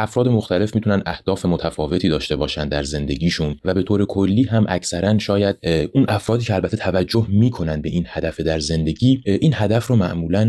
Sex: male